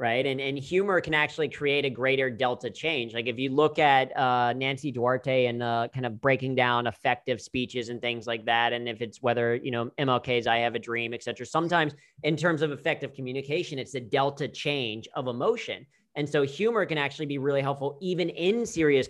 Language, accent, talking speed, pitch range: English, American, 205 wpm, 125-150 Hz